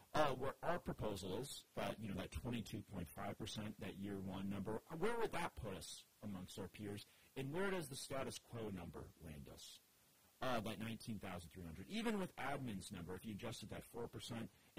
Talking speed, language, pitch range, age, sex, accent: 180 wpm, English, 105-155 Hz, 40-59, male, American